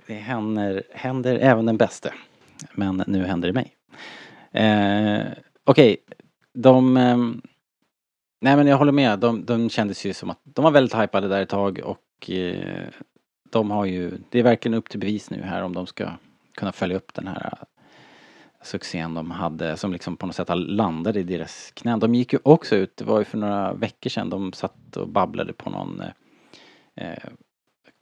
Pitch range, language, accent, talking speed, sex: 90-115 Hz, Swedish, Norwegian, 185 wpm, male